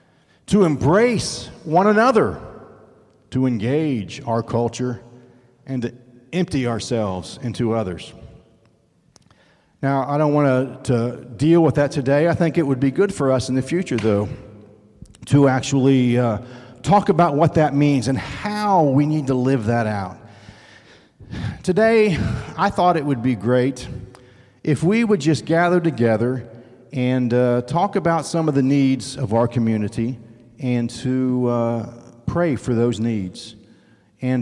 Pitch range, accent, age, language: 120-155 Hz, American, 50-69, English